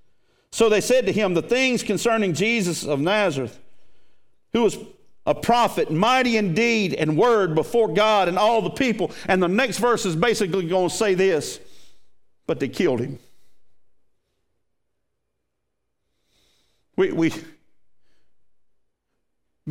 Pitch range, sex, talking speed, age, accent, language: 170-225 Hz, male, 130 wpm, 50-69, American, English